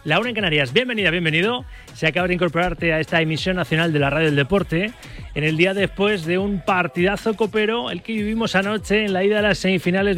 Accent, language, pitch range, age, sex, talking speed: Spanish, Spanish, 155-205 Hz, 30-49, male, 220 wpm